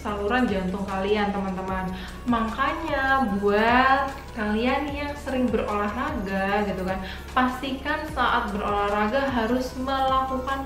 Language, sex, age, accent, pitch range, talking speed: Indonesian, female, 20-39, native, 200-250 Hz, 95 wpm